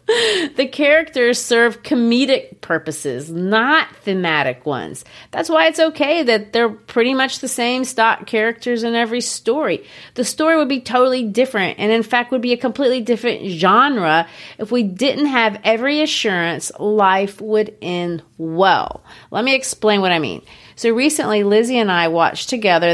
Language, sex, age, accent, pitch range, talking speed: English, female, 40-59, American, 170-245 Hz, 160 wpm